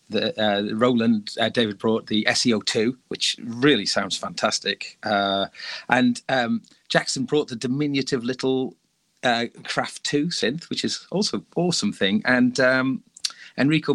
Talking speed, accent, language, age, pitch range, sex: 140 wpm, British, English, 40-59, 130-205 Hz, male